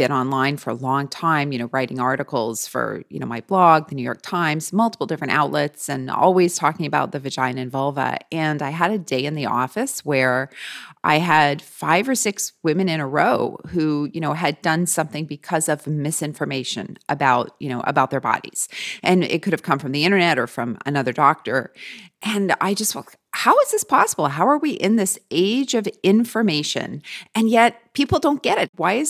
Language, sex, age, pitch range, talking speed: English, female, 30-49, 150-215 Hz, 200 wpm